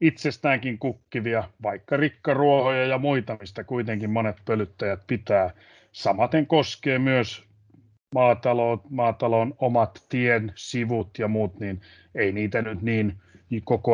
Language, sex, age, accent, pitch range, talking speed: Finnish, male, 30-49, native, 105-130 Hz, 115 wpm